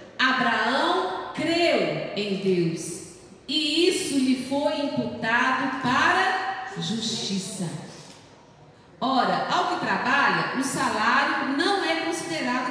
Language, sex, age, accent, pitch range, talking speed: Portuguese, female, 40-59, Brazilian, 230-315 Hz, 95 wpm